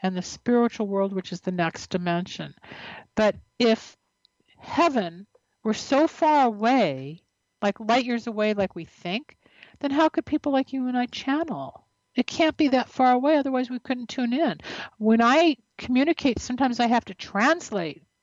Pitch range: 195-245 Hz